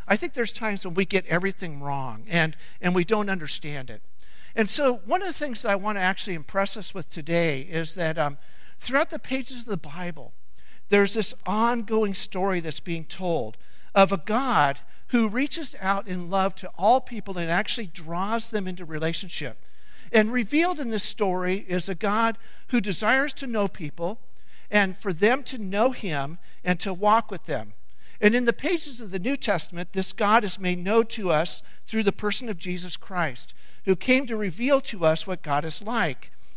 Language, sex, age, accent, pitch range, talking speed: English, male, 60-79, American, 170-225 Hz, 190 wpm